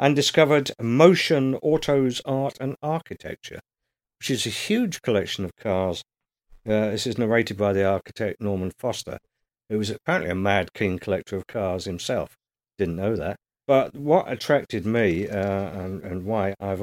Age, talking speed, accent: 50-69, 160 wpm, British